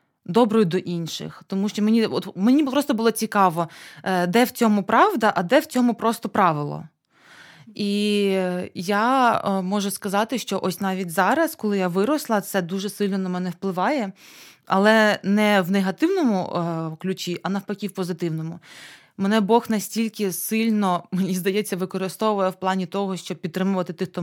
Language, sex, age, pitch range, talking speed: Ukrainian, female, 20-39, 185-225 Hz, 150 wpm